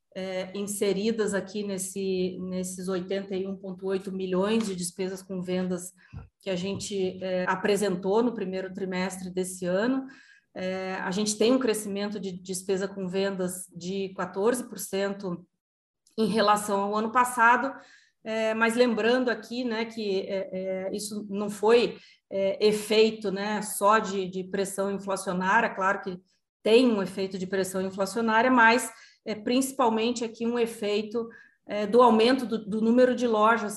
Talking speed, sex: 125 wpm, female